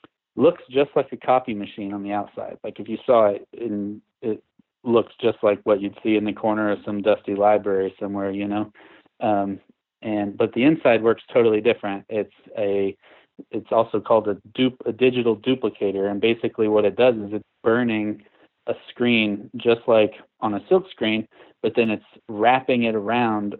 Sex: male